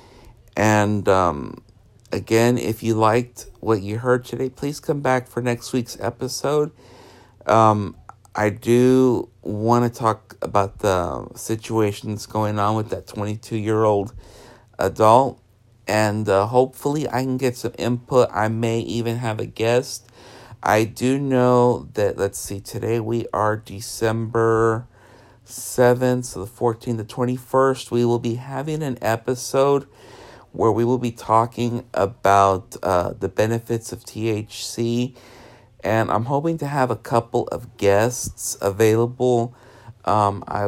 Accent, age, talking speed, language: American, 50-69, 135 wpm, English